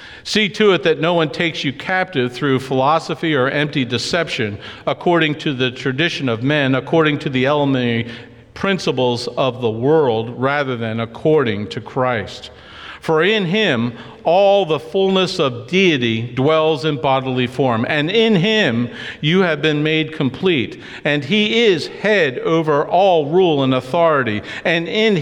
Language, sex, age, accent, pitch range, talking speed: English, male, 50-69, American, 130-190 Hz, 150 wpm